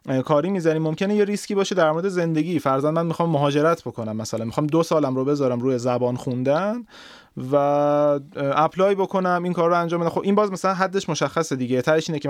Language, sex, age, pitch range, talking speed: Persian, male, 30-49, 135-180 Hz, 195 wpm